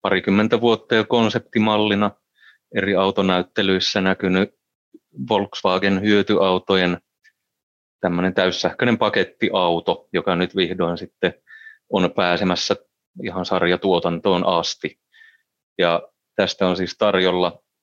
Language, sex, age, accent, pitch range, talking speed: Finnish, male, 30-49, native, 90-105 Hz, 90 wpm